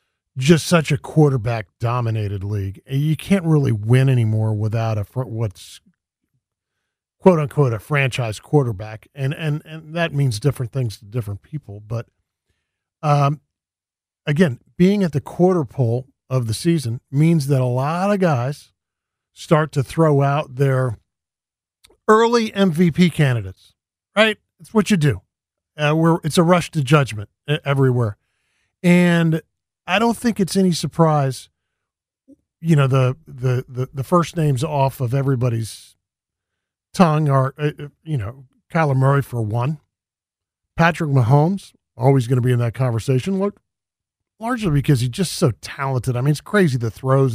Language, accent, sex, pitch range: English, American, male, 115-155 Hz